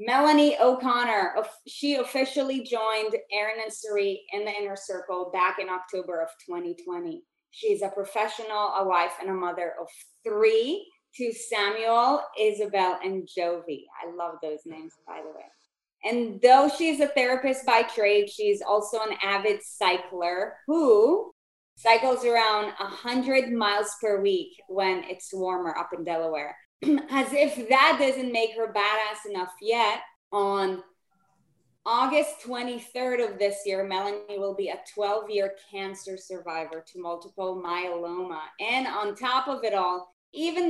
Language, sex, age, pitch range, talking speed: English, female, 20-39, 195-270 Hz, 140 wpm